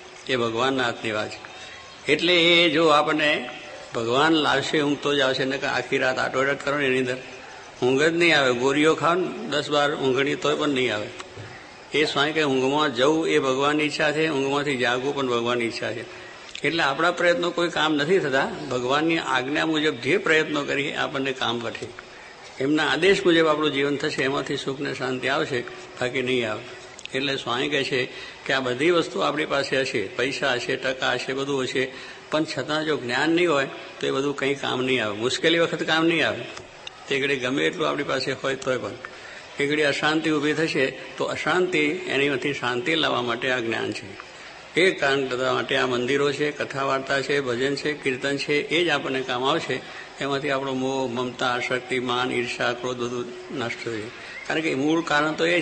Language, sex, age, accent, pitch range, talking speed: English, male, 50-69, Indian, 130-155 Hz, 125 wpm